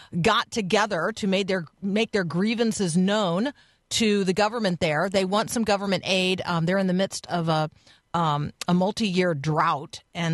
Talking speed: 180 wpm